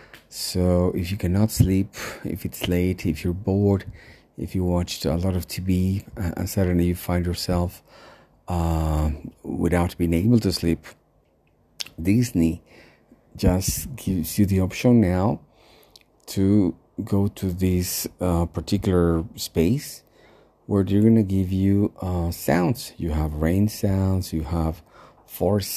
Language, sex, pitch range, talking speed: English, male, 85-105 Hz, 135 wpm